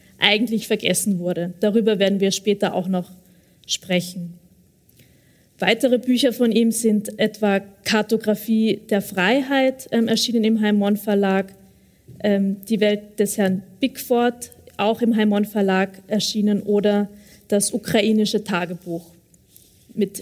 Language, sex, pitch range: German, female, 200-235 Hz